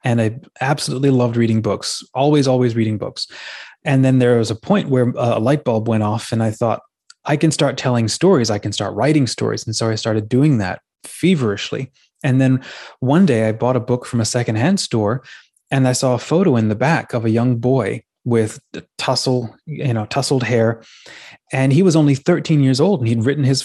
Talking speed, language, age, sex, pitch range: 210 wpm, English, 20-39, male, 115-145 Hz